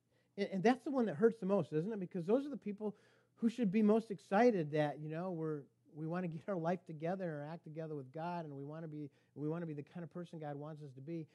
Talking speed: 270 wpm